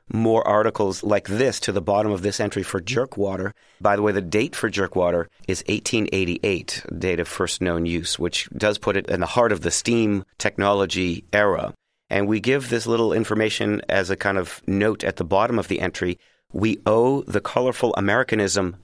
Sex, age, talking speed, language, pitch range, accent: male, 40-59, 190 wpm, English, 90-110 Hz, American